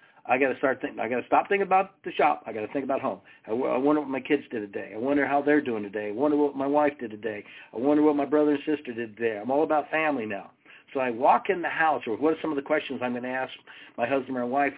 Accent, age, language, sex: American, 50-69, English, male